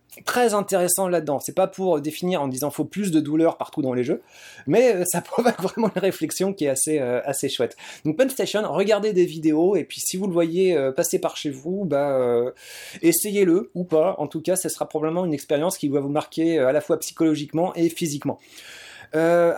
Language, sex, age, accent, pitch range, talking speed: French, male, 20-39, French, 140-185 Hz, 220 wpm